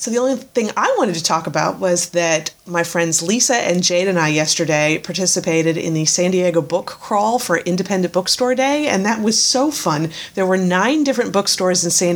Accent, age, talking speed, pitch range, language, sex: American, 30-49, 205 wpm, 160-200 Hz, English, female